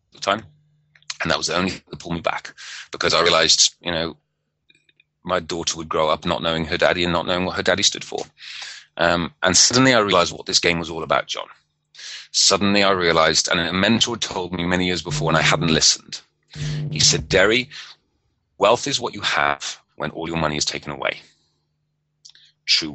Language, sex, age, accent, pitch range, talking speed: English, male, 30-49, British, 75-100 Hz, 200 wpm